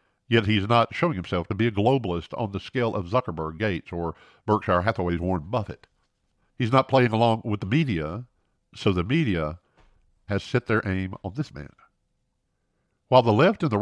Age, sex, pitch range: 50-69, male, 95-120 Hz